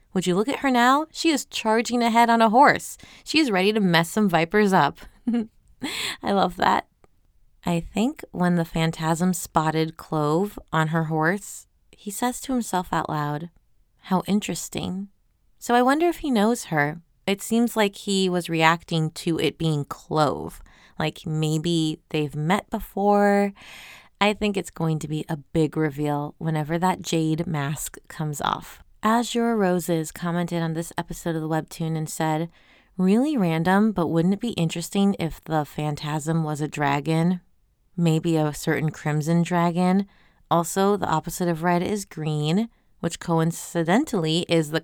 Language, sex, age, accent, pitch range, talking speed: English, female, 20-39, American, 155-200 Hz, 160 wpm